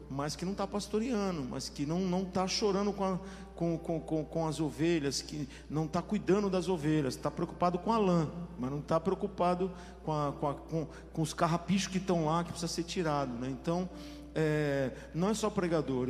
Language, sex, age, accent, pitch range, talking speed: Portuguese, male, 50-69, Brazilian, 155-185 Hz, 210 wpm